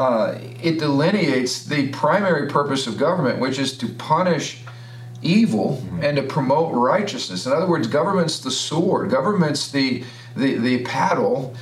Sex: male